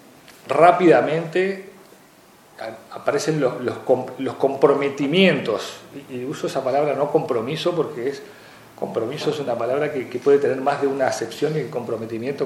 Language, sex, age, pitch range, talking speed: Spanish, male, 40-59, 120-175 Hz, 140 wpm